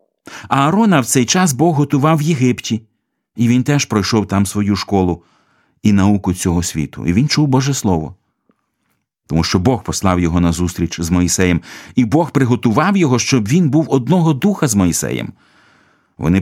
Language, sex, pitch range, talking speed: Ukrainian, male, 90-125 Hz, 170 wpm